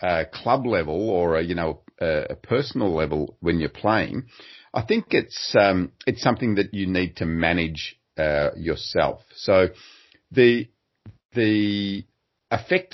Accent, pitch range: Australian, 85-120 Hz